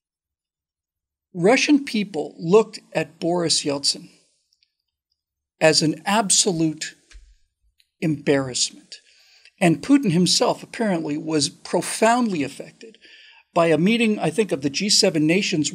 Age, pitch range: 50-69, 155-220 Hz